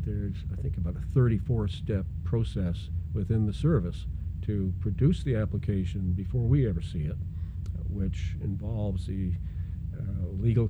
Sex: male